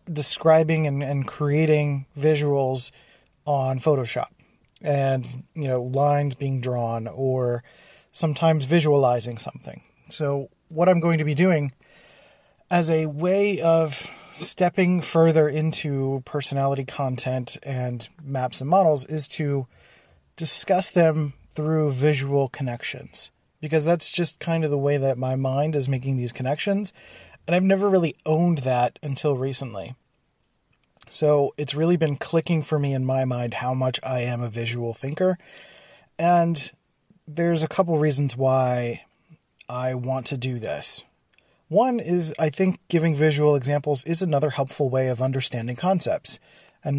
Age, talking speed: 30-49, 140 wpm